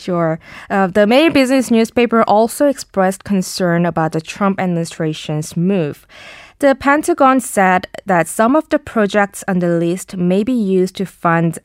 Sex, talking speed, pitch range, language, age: female, 155 wpm, 170-225 Hz, English, 20-39